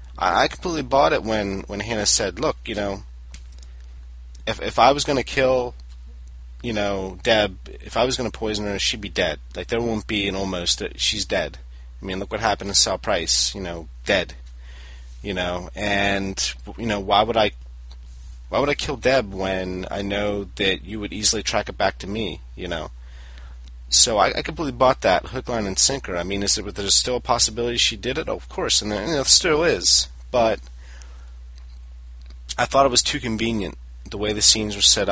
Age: 30-49